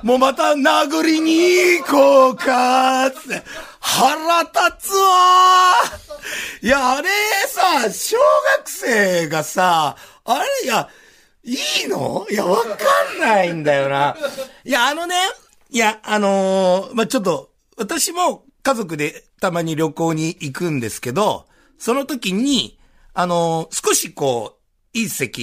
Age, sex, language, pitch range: 50-69, male, Japanese, 170-275 Hz